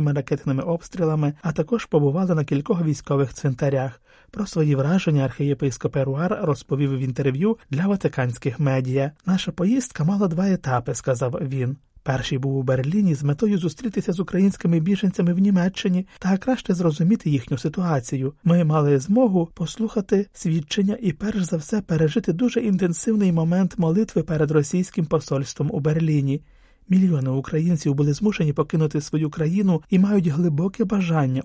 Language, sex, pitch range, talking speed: Ukrainian, male, 145-185 Hz, 145 wpm